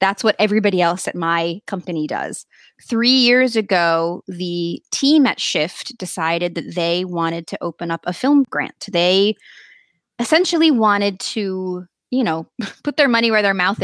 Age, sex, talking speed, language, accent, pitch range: 20-39, female, 160 wpm, English, American, 175-215 Hz